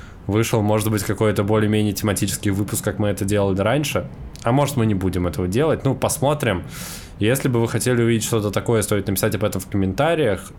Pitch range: 95-105 Hz